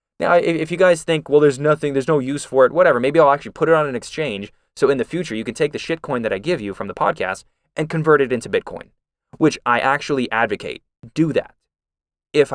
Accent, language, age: American, English, 20-39